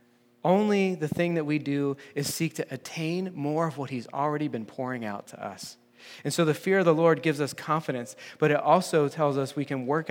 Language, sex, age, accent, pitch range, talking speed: English, male, 30-49, American, 120-150 Hz, 225 wpm